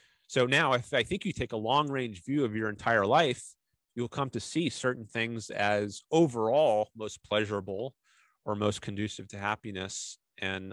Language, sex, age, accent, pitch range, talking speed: English, male, 30-49, American, 105-125 Hz, 170 wpm